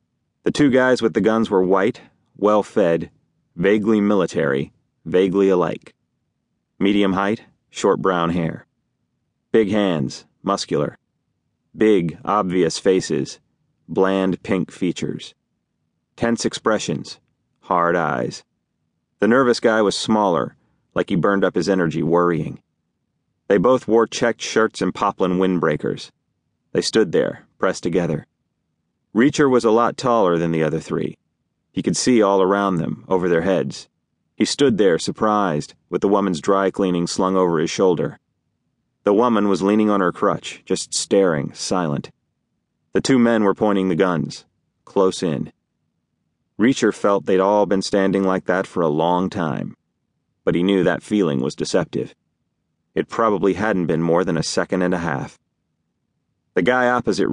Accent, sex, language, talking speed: American, male, English, 145 wpm